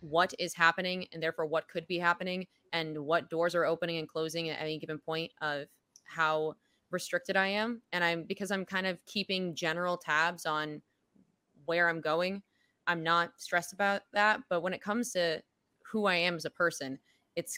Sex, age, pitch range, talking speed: female, 20-39, 160-195 Hz, 190 wpm